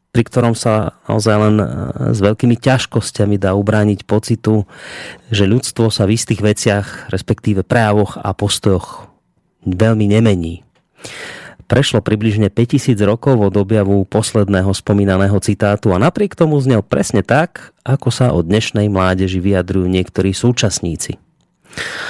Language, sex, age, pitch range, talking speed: Slovak, male, 30-49, 100-120 Hz, 125 wpm